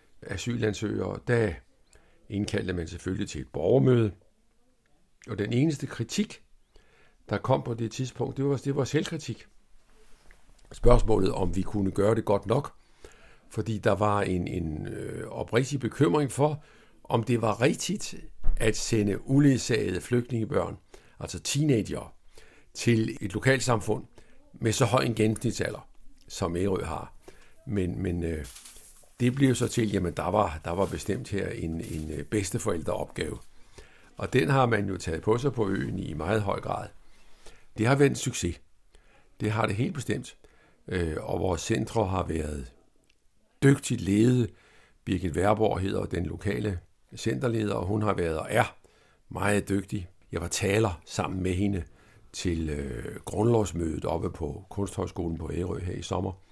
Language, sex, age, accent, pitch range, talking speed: Danish, male, 60-79, native, 90-120 Hz, 140 wpm